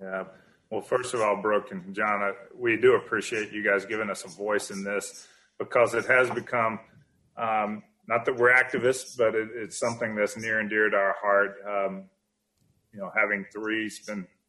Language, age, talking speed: English, 30-49, 185 wpm